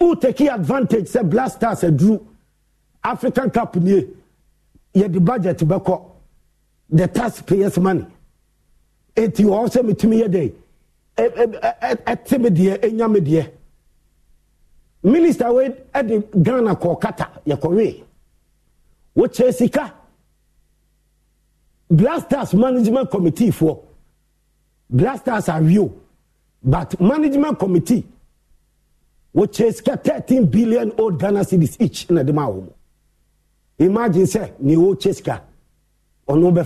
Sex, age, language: male, 50-69, English